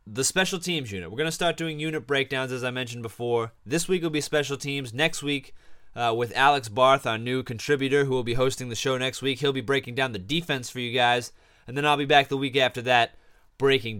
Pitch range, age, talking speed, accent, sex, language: 115-155 Hz, 20-39, 245 wpm, American, male, English